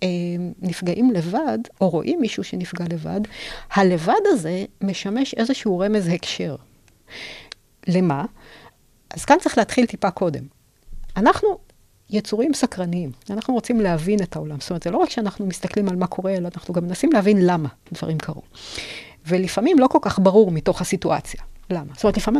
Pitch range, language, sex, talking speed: 180-230 Hz, Hebrew, female, 155 wpm